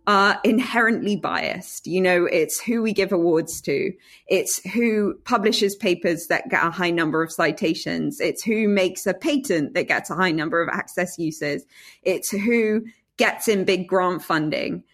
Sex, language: female, English